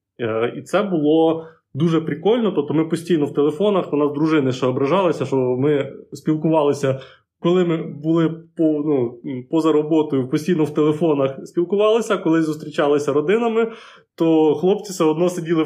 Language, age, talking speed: Ukrainian, 20-39, 140 wpm